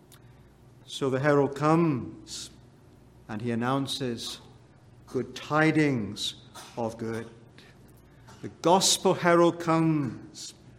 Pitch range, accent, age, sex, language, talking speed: 120-150 Hz, British, 60-79, male, English, 85 wpm